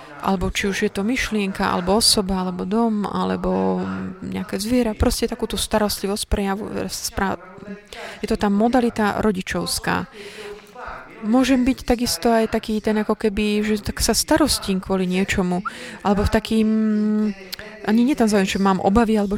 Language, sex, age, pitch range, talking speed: Slovak, female, 30-49, 185-220 Hz, 150 wpm